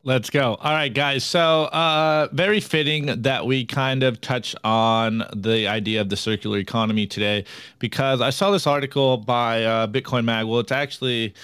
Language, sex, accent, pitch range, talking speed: English, male, American, 115-160 Hz, 180 wpm